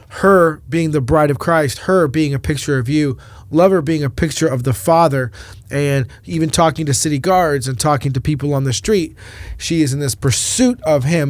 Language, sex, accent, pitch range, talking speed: English, male, American, 125-155 Hz, 205 wpm